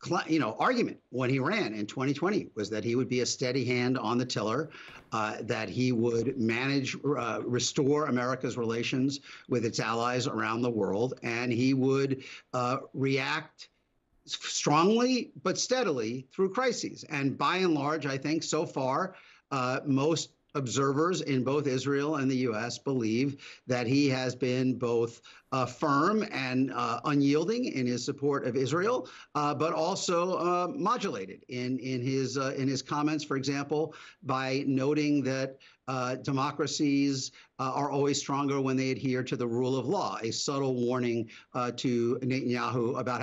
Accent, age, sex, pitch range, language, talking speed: American, 50-69, male, 125-145 Hz, English, 160 wpm